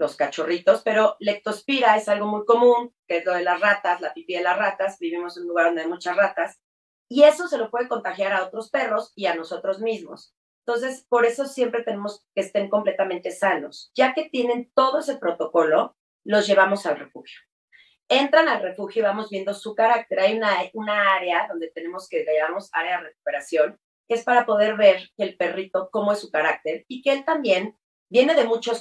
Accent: Mexican